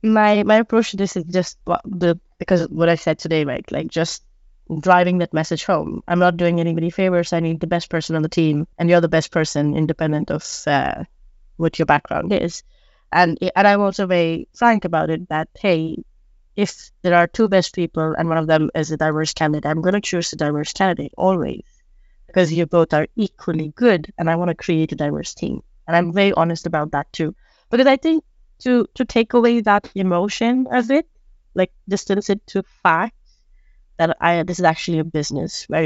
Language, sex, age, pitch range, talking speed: English, female, 20-39, 160-195 Hz, 210 wpm